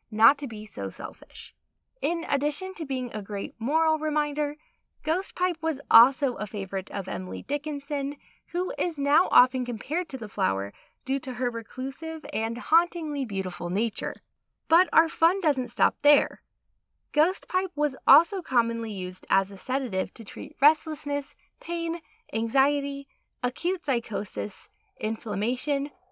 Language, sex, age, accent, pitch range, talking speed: English, female, 20-39, American, 230-315 Hz, 140 wpm